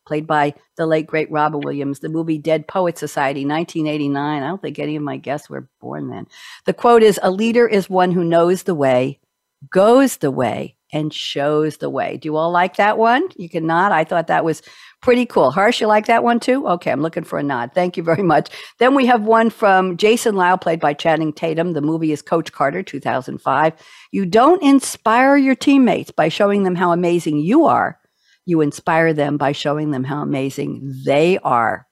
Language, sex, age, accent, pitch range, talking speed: English, female, 60-79, American, 155-220 Hz, 205 wpm